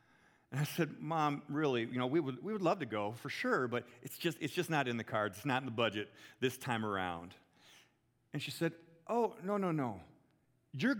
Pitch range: 125-165 Hz